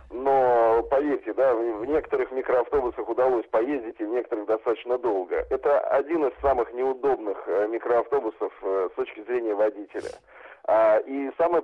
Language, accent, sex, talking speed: Russian, native, male, 130 wpm